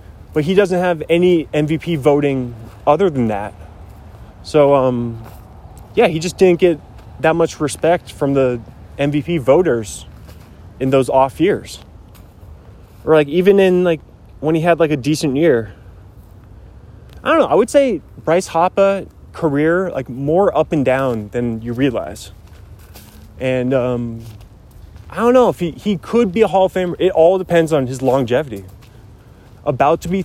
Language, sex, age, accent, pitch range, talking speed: English, male, 20-39, American, 110-175 Hz, 160 wpm